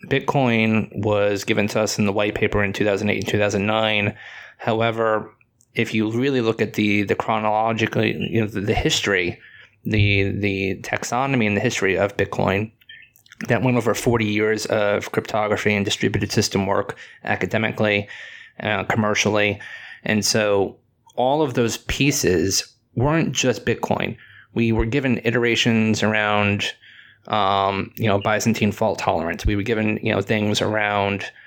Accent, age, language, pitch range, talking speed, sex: American, 20-39, English, 105-120 Hz, 145 wpm, male